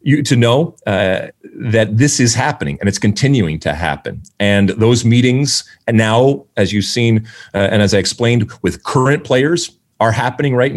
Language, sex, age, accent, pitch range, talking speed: English, male, 40-59, American, 100-130 Hz, 180 wpm